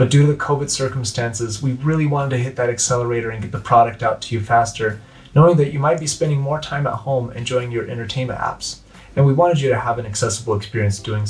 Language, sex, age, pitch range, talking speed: English, male, 30-49, 110-140 Hz, 240 wpm